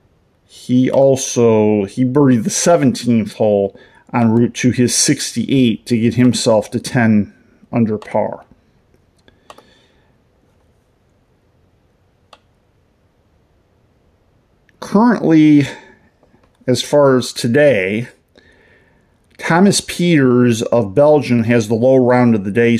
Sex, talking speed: male, 90 wpm